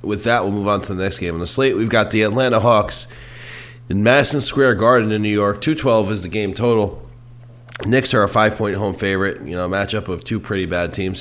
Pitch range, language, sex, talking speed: 95-115 Hz, English, male, 240 wpm